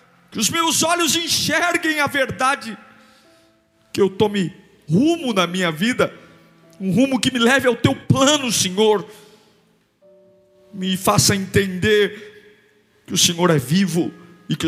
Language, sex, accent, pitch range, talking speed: Portuguese, male, Brazilian, 145-210 Hz, 135 wpm